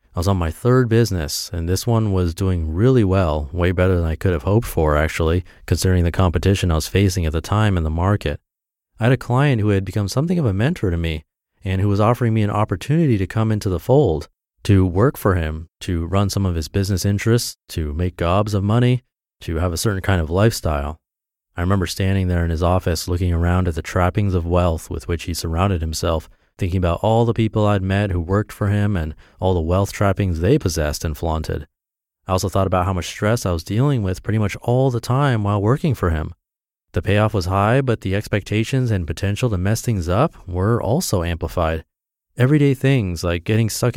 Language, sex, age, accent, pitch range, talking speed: English, male, 30-49, American, 85-110 Hz, 220 wpm